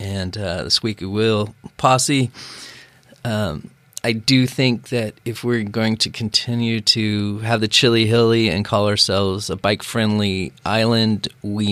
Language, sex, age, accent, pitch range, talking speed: English, male, 30-49, American, 95-115 Hz, 145 wpm